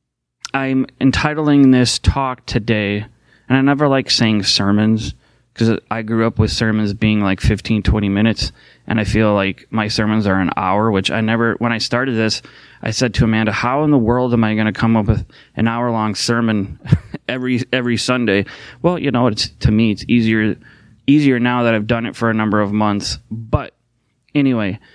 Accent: American